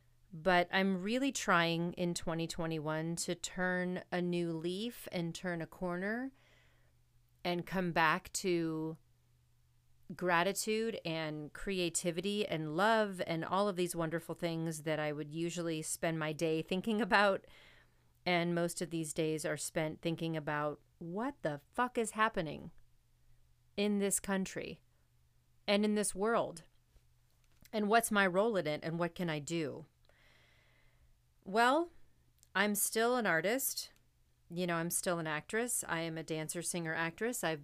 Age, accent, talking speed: 30-49, American, 140 wpm